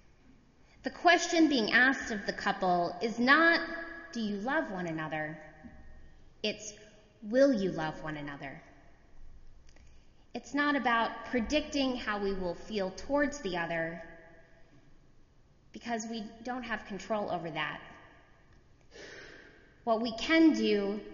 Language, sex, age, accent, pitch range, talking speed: English, female, 20-39, American, 165-240 Hz, 120 wpm